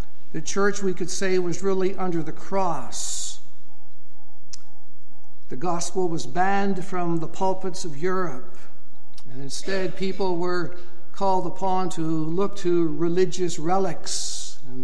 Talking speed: 125 wpm